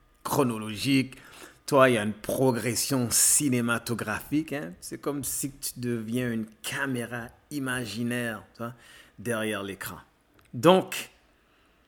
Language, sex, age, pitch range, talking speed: French, male, 50-69, 115-130 Hz, 105 wpm